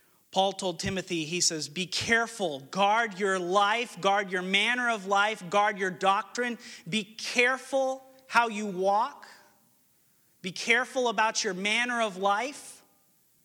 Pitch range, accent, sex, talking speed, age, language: 180-220 Hz, American, male, 135 wpm, 40-59, English